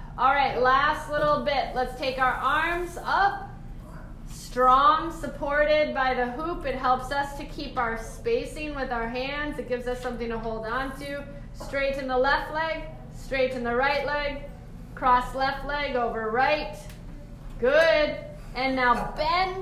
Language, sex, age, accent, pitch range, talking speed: English, female, 30-49, American, 260-315 Hz, 150 wpm